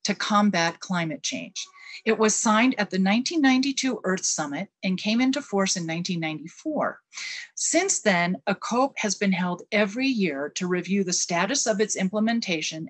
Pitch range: 180-230 Hz